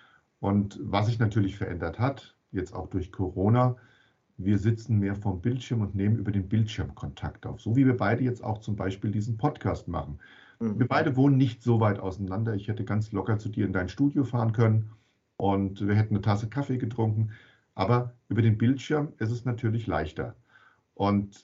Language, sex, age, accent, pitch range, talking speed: German, male, 50-69, German, 105-130 Hz, 190 wpm